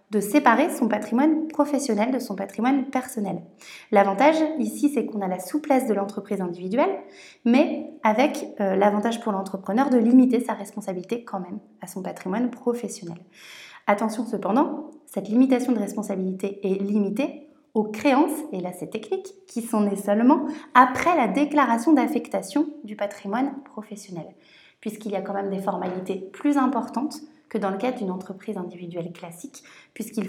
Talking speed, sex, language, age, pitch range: 155 wpm, female, French, 30-49, 195-260 Hz